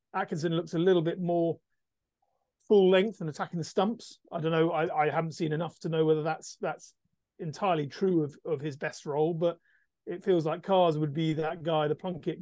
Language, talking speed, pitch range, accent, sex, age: English, 210 wpm, 150-185 Hz, British, male, 30-49